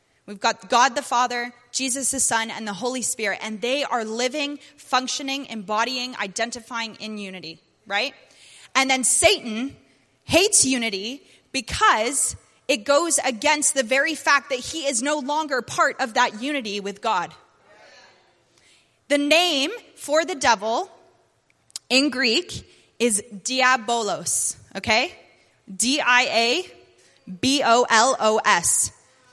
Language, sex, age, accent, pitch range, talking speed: English, female, 20-39, American, 230-290 Hz, 115 wpm